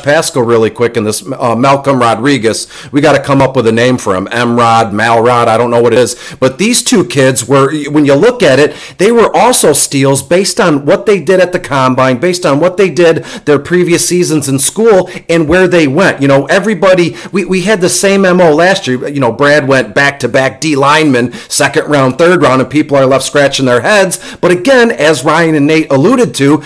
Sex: male